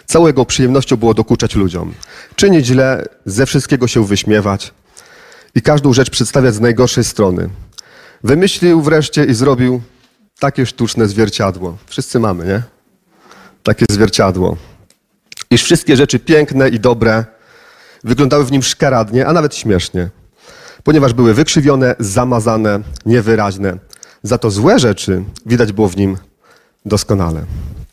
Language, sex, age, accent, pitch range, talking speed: Polish, male, 40-59, native, 105-135 Hz, 120 wpm